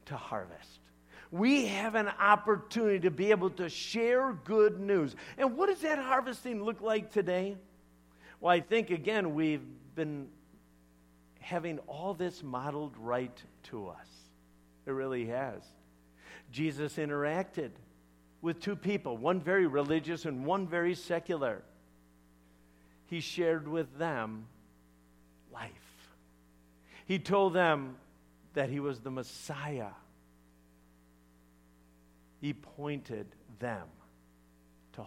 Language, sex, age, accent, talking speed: English, male, 50-69, American, 115 wpm